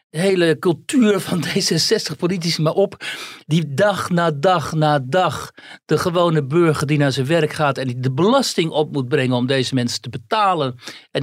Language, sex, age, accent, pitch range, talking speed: Dutch, male, 60-79, Dutch, 130-170 Hz, 190 wpm